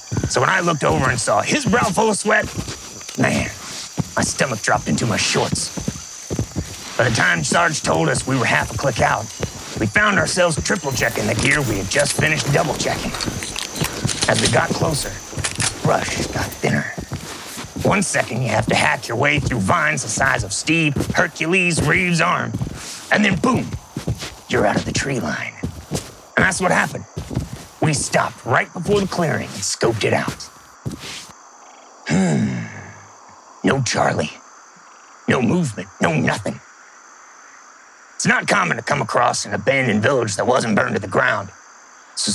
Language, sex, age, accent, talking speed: English, male, 30-49, American, 160 wpm